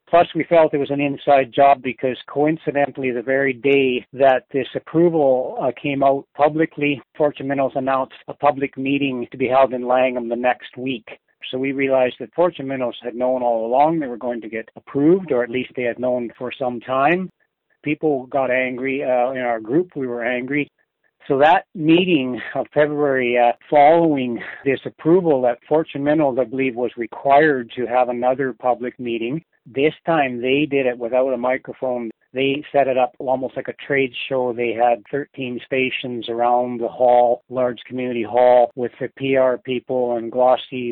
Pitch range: 125-145 Hz